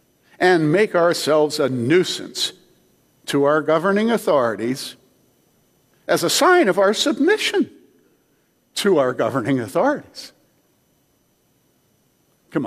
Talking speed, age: 95 wpm, 60-79